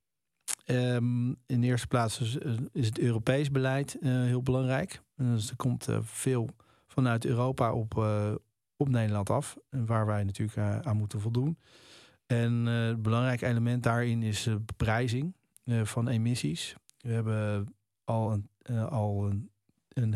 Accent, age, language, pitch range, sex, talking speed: Dutch, 40-59, Dutch, 105-125 Hz, male, 160 wpm